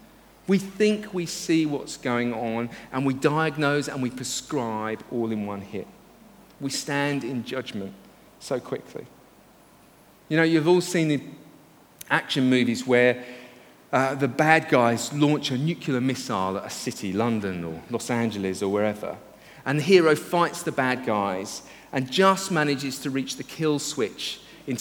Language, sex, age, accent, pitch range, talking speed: English, male, 40-59, British, 120-165 Hz, 155 wpm